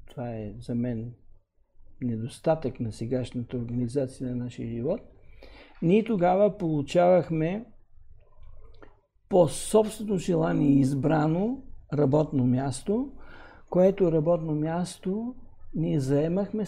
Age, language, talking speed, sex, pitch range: 60-79, Bulgarian, 90 wpm, male, 130-180 Hz